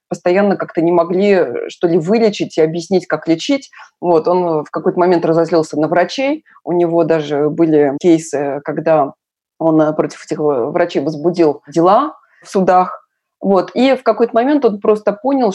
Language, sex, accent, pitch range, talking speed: Russian, female, native, 165-205 Hz, 145 wpm